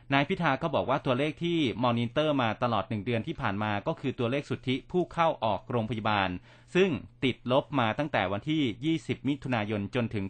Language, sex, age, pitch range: Thai, male, 30-49, 110-145 Hz